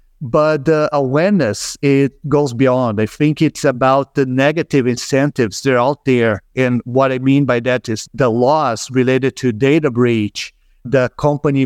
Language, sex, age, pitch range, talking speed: English, male, 50-69, 125-150 Hz, 165 wpm